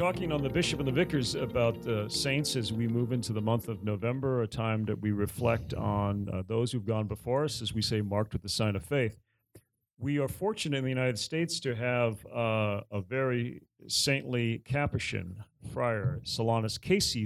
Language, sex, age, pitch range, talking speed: English, male, 40-59, 110-140 Hz, 195 wpm